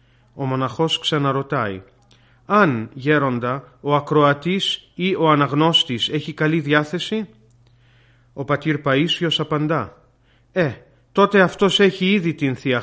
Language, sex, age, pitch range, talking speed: Greek, male, 30-49, 125-180 Hz, 110 wpm